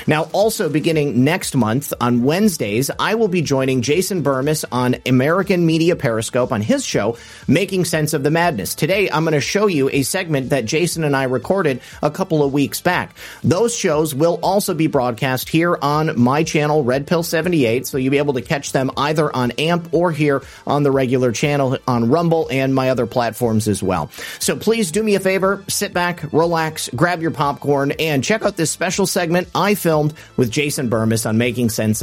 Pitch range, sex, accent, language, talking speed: 135-180 Hz, male, American, English, 200 wpm